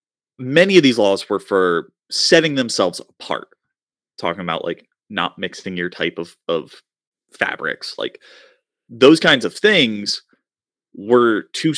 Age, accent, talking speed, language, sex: 30-49, American, 130 wpm, English, male